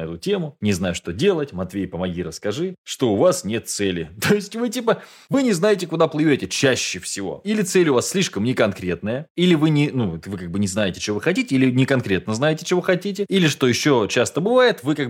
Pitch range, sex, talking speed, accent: 105-160 Hz, male, 225 wpm, native